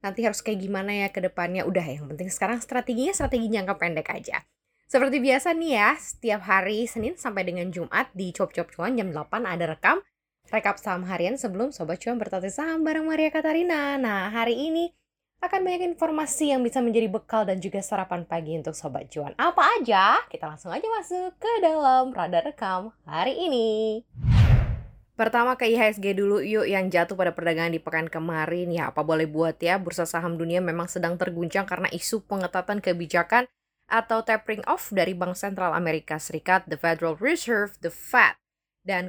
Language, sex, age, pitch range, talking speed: Indonesian, female, 10-29, 170-230 Hz, 175 wpm